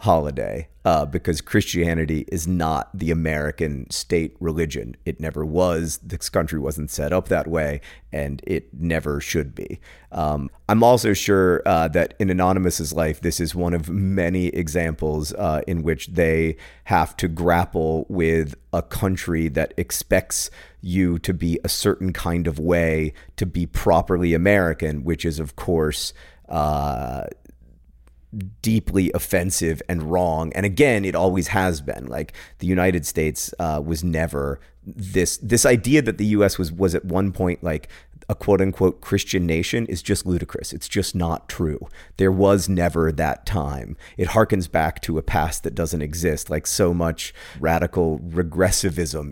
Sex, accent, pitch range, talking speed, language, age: male, American, 80-95 Hz, 155 wpm, English, 30-49